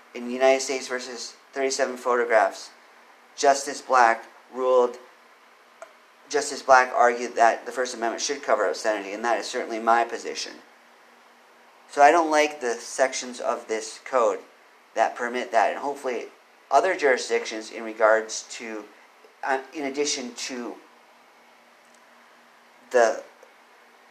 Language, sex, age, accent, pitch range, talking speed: English, male, 40-59, American, 115-135 Hz, 125 wpm